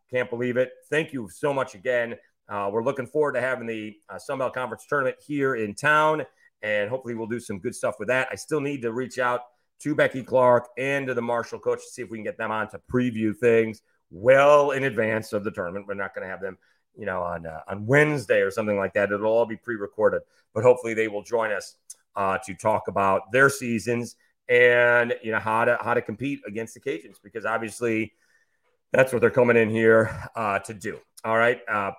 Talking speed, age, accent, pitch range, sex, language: 225 wpm, 30-49, American, 110-140 Hz, male, English